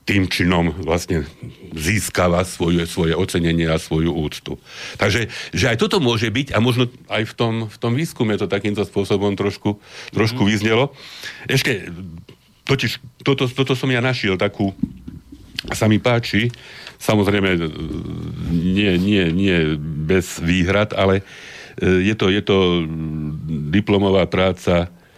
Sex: male